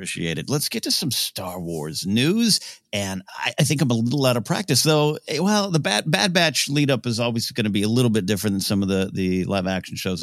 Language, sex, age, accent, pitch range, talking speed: English, male, 50-69, American, 100-150 Hz, 245 wpm